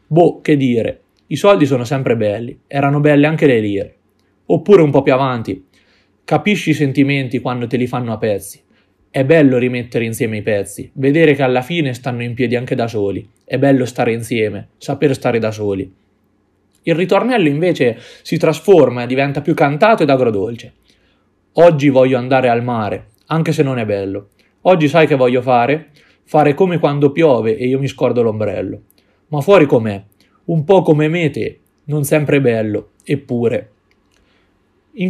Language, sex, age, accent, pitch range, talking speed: Italian, male, 20-39, native, 115-155 Hz, 170 wpm